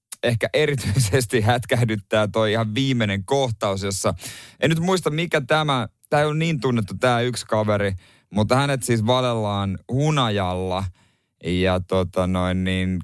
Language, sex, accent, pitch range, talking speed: Finnish, male, native, 100-125 Hz, 135 wpm